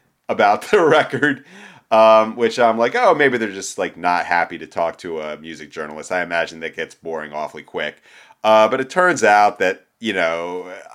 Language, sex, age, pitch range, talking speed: English, male, 30-49, 95-120 Hz, 190 wpm